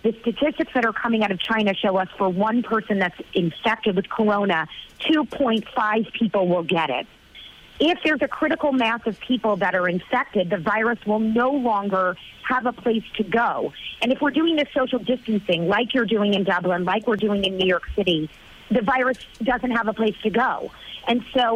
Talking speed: 200 wpm